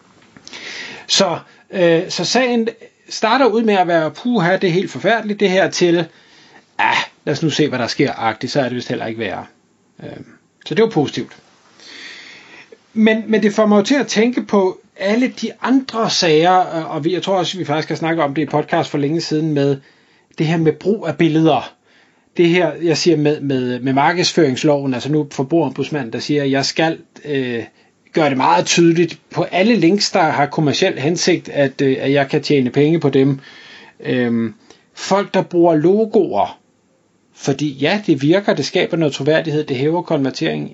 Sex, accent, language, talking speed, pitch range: male, native, Danish, 185 wpm, 140-190 Hz